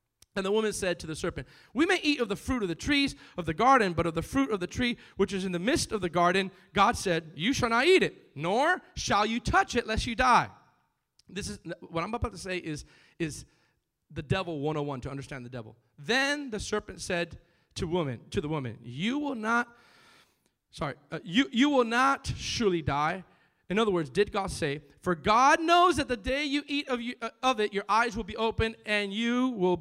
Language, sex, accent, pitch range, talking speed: English, male, American, 170-255 Hz, 220 wpm